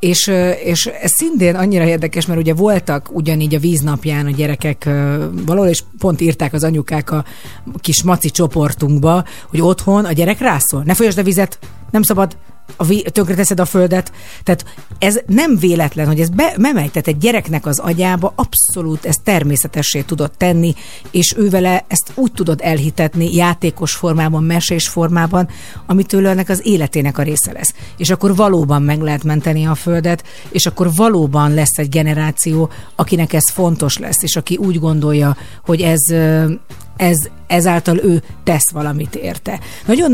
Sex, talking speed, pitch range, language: female, 155 wpm, 150-180 Hz, Hungarian